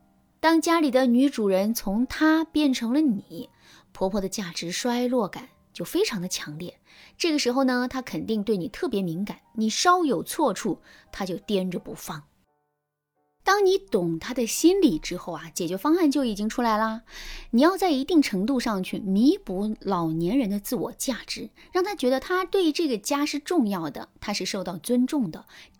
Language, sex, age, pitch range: Chinese, female, 20-39, 195-300 Hz